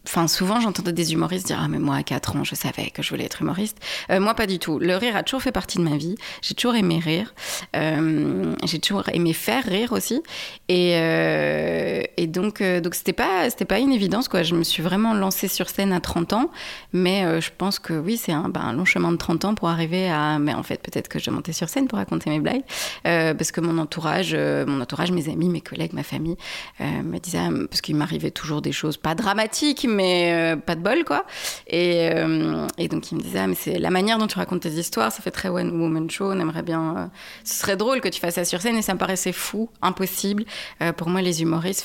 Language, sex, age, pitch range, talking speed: French, female, 20-39, 160-200 Hz, 255 wpm